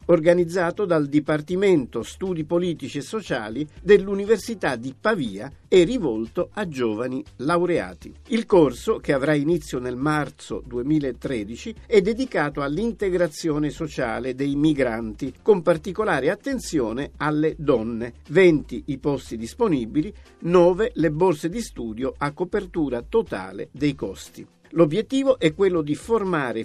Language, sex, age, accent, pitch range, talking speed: Italian, male, 50-69, native, 140-185 Hz, 120 wpm